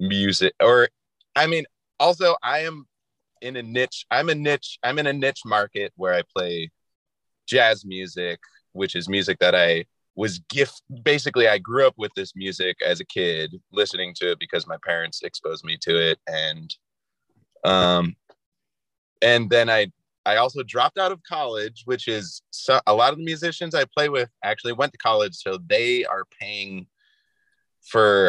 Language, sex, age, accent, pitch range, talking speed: English, male, 20-39, American, 95-135 Hz, 170 wpm